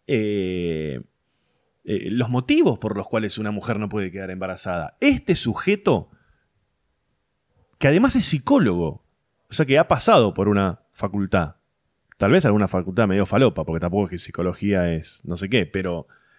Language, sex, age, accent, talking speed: Spanish, male, 30-49, Argentinian, 155 wpm